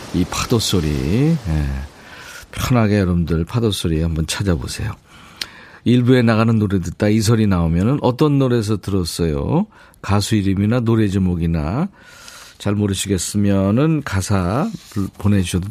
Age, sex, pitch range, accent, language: 50-69, male, 95-140 Hz, native, Korean